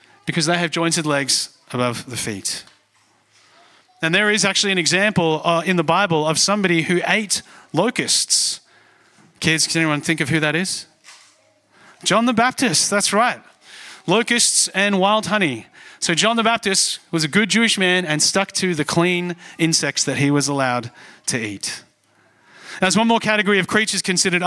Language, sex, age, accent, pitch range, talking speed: English, male, 30-49, Australian, 165-210 Hz, 165 wpm